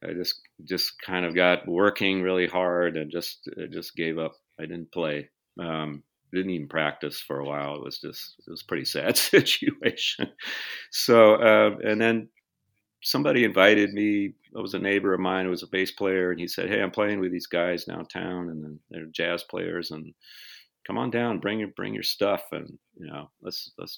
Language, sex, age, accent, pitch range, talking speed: English, male, 40-59, American, 85-100 Hz, 200 wpm